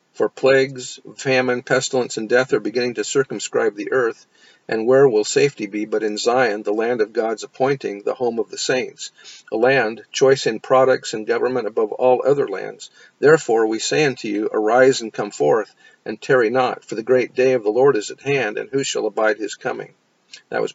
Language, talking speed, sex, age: English, 205 wpm, male, 50-69